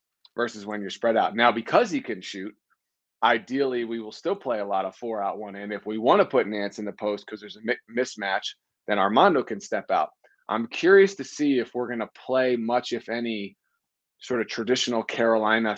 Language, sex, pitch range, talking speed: English, male, 110-130 Hz, 215 wpm